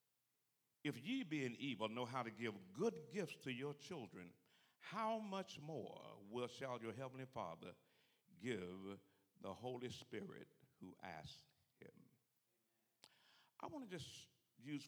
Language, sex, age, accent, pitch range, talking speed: English, male, 60-79, American, 105-145 Hz, 135 wpm